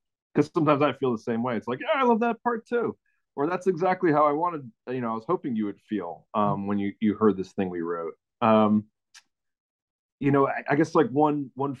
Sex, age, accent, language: male, 30-49, American, English